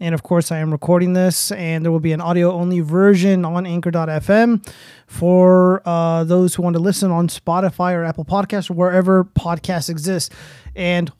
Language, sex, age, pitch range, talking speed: English, male, 20-39, 170-200 Hz, 175 wpm